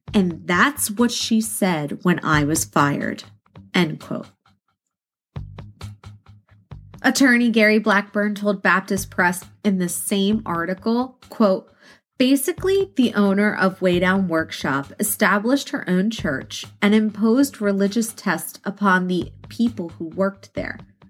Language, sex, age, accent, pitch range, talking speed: English, female, 20-39, American, 165-225 Hz, 120 wpm